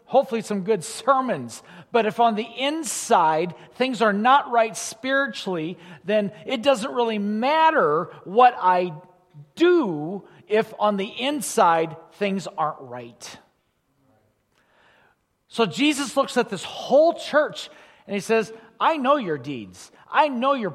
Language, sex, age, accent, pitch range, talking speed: English, male, 40-59, American, 175-265 Hz, 135 wpm